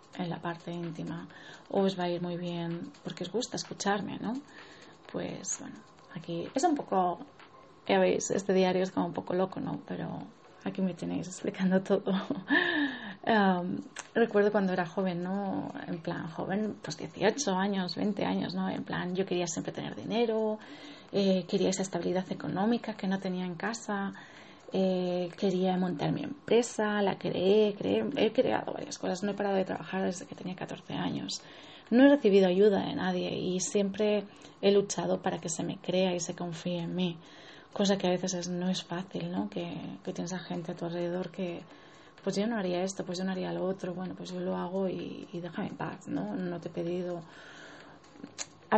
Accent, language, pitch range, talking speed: Spanish, Spanish, 180-205 Hz, 195 wpm